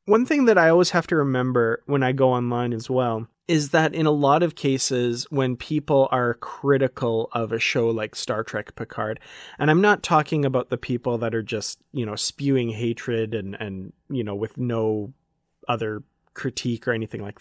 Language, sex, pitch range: English, male, 115-145 Hz